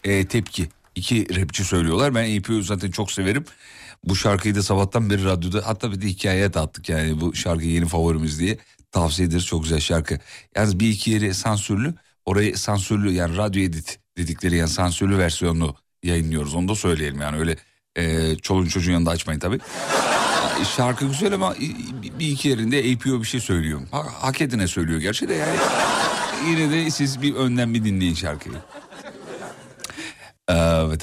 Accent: native